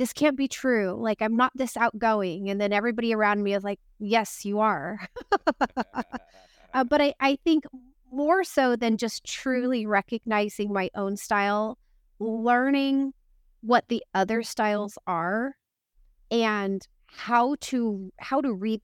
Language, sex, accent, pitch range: English, female, American, 205-245 Hz